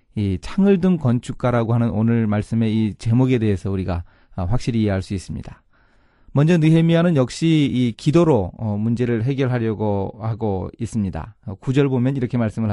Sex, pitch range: male, 110-150 Hz